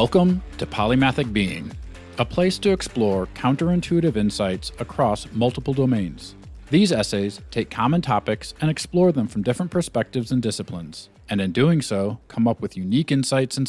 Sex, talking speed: male, 160 wpm